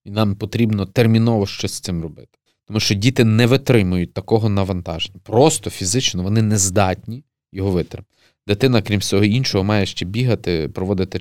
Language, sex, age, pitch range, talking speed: Ukrainian, male, 30-49, 95-125 Hz, 160 wpm